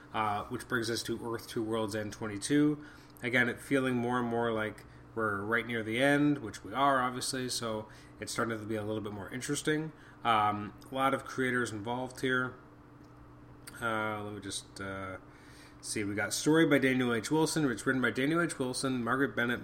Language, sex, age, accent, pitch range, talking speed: English, male, 30-49, American, 110-130 Hz, 200 wpm